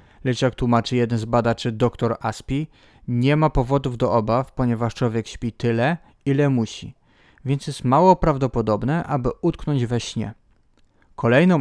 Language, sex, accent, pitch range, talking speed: Polish, male, native, 115-140 Hz, 145 wpm